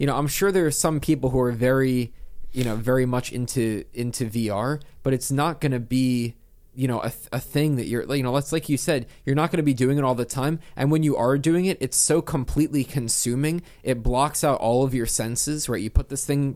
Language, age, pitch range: English, 20-39, 115-140 Hz